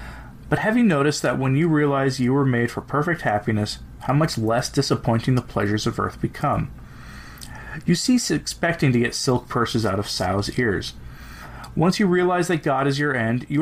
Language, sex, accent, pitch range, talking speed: English, male, American, 115-150 Hz, 185 wpm